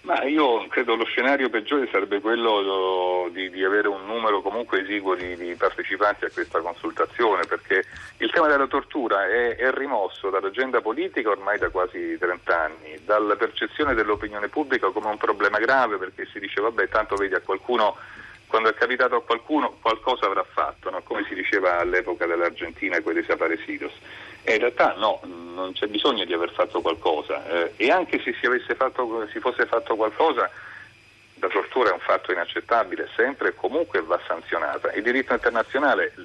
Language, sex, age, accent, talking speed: Italian, male, 40-59, native, 175 wpm